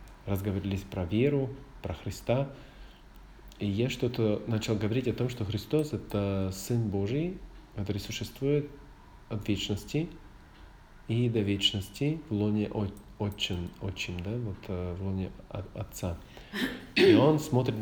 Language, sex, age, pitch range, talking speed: Russian, male, 40-59, 95-120 Hz, 120 wpm